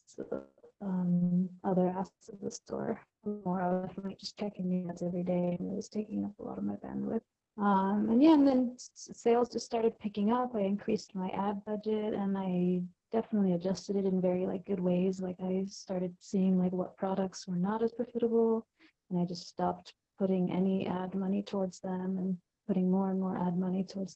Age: 30-49